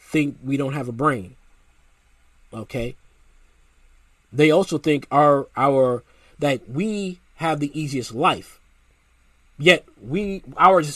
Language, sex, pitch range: English, male, 110-155 Hz